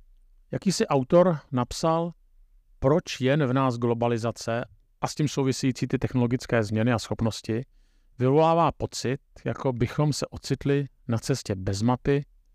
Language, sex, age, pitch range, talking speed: Czech, male, 50-69, 105-135 Hz, 135 wpm